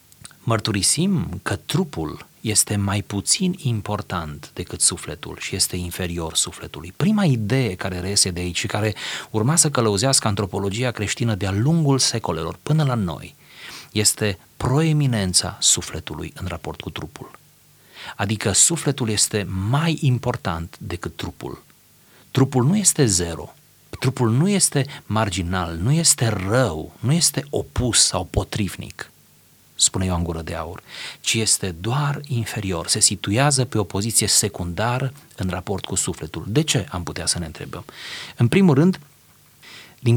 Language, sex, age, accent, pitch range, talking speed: Romanian, male, 40-59, native, 95-135 Hz, 135 wpm